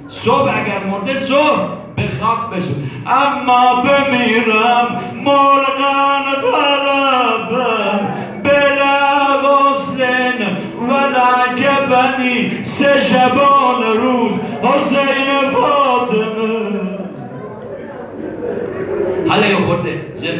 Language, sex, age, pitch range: Persian, male, 60-79, 215-250 Hz